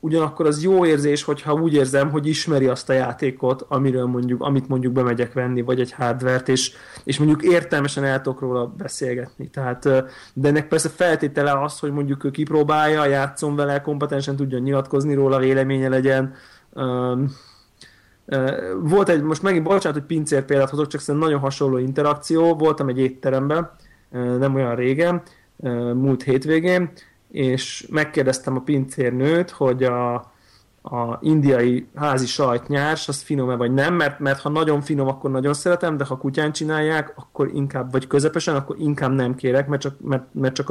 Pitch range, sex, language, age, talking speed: 130-150 Hz, male, Hungarian, 30-49, 160 wpm